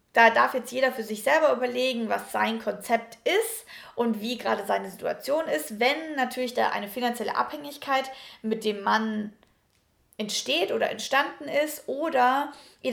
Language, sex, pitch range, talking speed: German, female, 225-295 Hz, 155 wpm